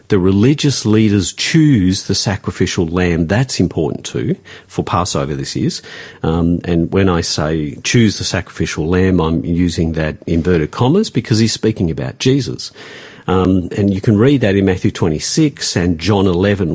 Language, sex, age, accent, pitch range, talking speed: English, male, 50-69, Australian, 85-110 Hz, 160 wpm